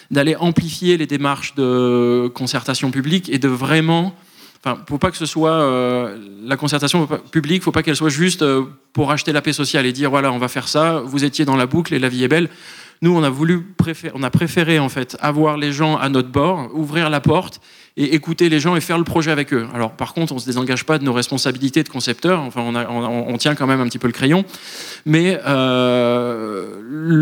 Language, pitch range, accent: French, 125-155 Hz, French